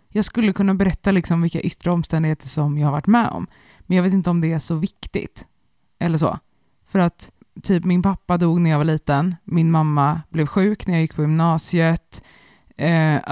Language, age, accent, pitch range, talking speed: Swedish, 20-39, native, 155-185 Hz, 205 wpm